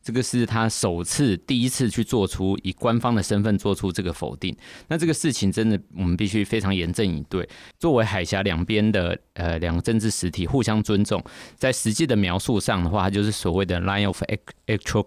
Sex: male